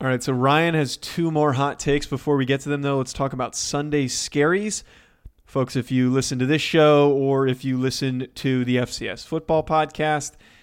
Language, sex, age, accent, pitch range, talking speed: English, male, 20-39, American, 130-155 Hz, 205 wpm